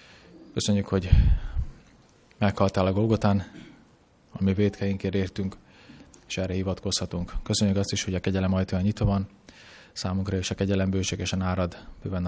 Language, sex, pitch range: Hungarian, male, 90-100 Hz